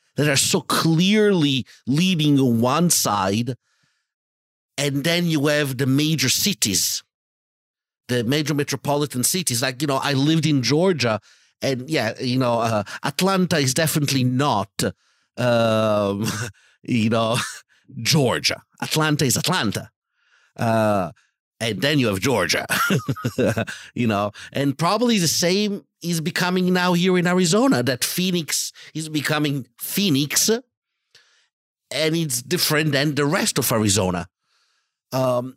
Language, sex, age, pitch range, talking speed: English, male, 50-69, 120-165 Hz, 125 wpm